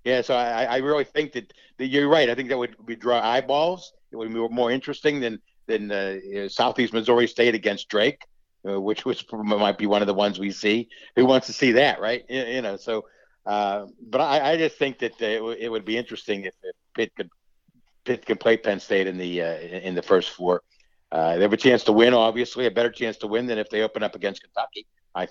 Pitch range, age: 100-125 Hz, 60-79